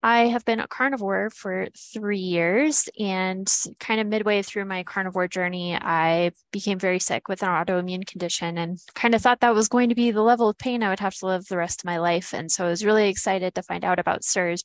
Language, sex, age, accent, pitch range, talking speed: English, female, 10-29, American, 175-215 Hz, 240 wpm